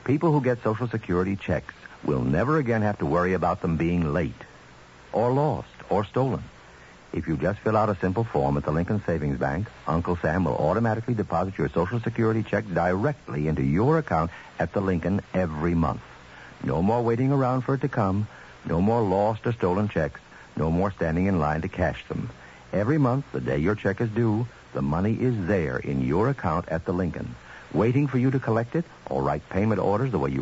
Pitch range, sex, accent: 80-125 Hz, male, American